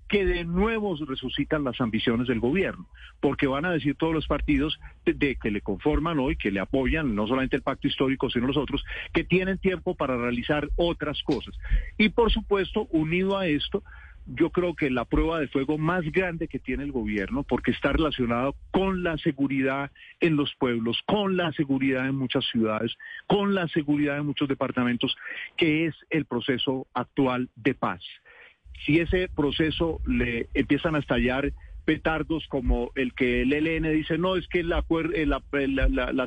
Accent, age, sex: Colombian, 40-59, male